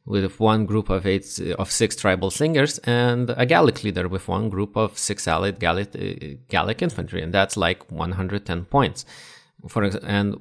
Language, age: English, 30-49